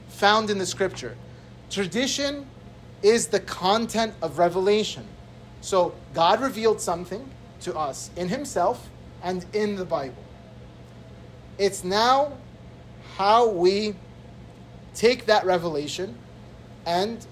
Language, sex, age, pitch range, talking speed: English, male, 30-49, 150-205 Hz, 105 wpm